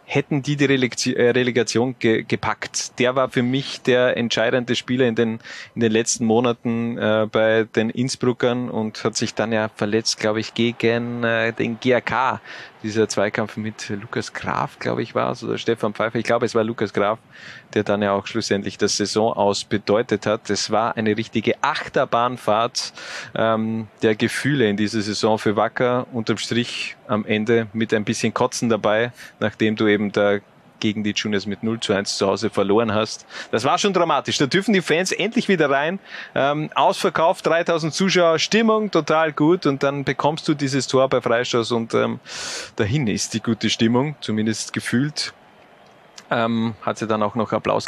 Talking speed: 180 wpm